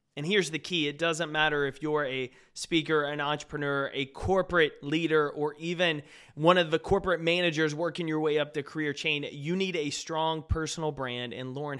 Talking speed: 195 wpm